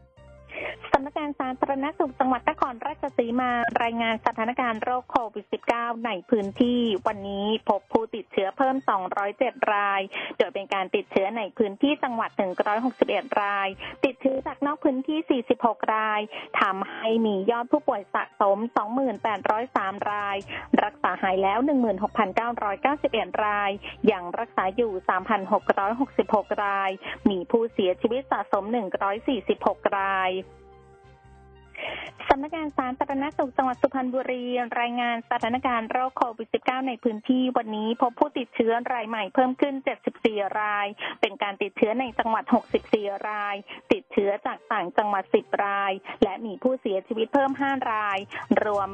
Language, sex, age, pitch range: Thai, female, 20-39, 200-255 Hz